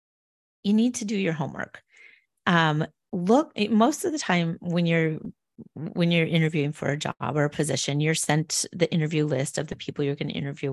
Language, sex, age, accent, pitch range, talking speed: English, female, 30-49, American, 155-195 Hz, 195 wpm